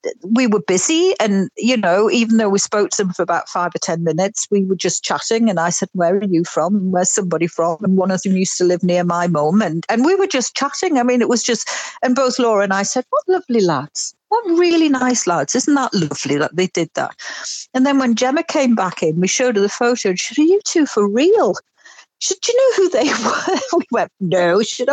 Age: 60-79